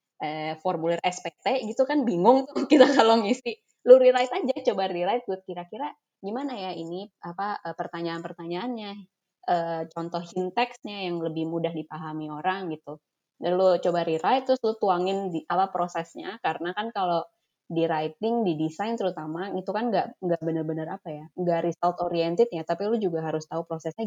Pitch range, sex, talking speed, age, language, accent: 165-220 Hz, female, 165 wpm, 20-39, Indonesian, native